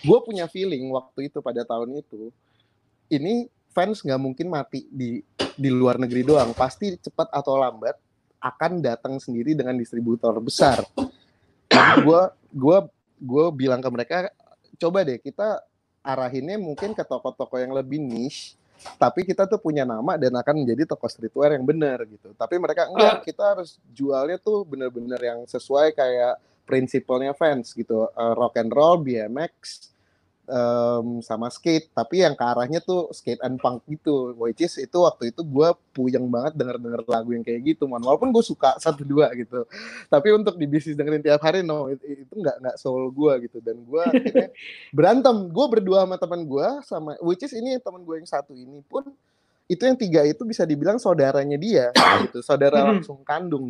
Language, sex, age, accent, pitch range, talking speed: Indonesian, male, 20-39, native, 125-175 Hz, 165 wpm